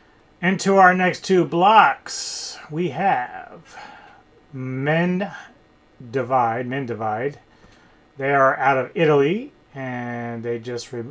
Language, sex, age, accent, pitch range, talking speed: English, male, 30-49, American, 110-140 Hz, 105 wpm